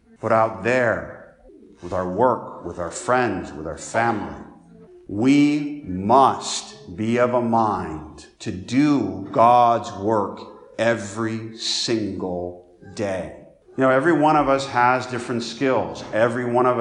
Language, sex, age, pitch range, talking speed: English, male, 50-69, 100-120 Hz, 130 wpm